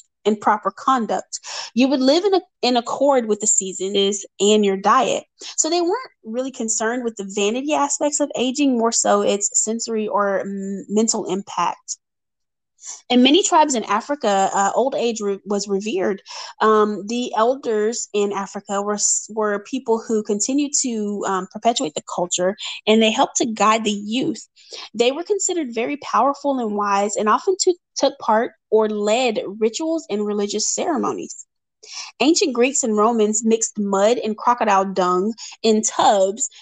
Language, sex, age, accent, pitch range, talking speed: English, female, 20-39, American, 200-255 Hz, 160 wpm